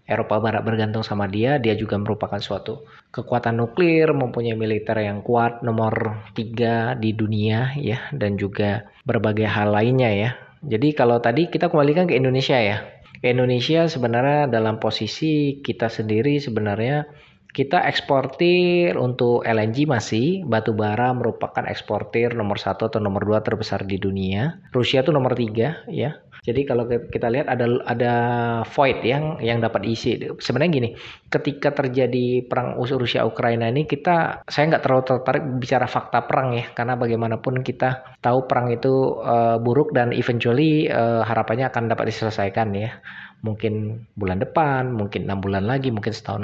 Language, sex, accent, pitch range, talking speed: Indonesian, male, native, 110-130 Hz, 150 wpm